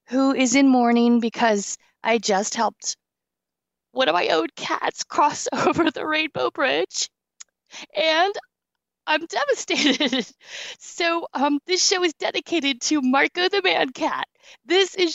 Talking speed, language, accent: 135 wpm, English, American